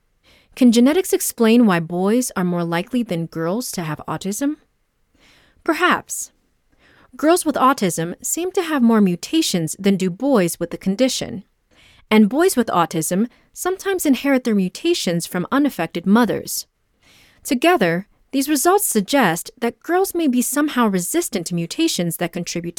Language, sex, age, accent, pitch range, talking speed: English, female, 30-49, American, 175-280 Hz, 140 wpm